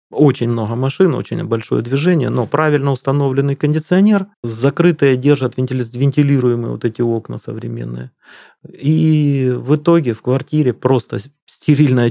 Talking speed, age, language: 120 wpm, 30-49, Russian